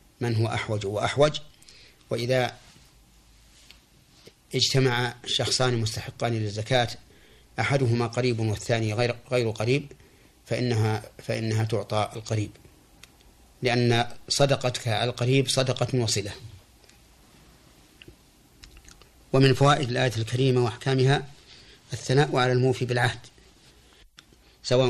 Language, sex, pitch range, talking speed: Arabic, male, 105-125 Hz, 90 wpm